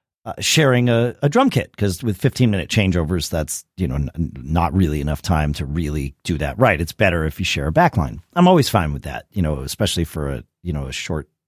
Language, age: English, 40-59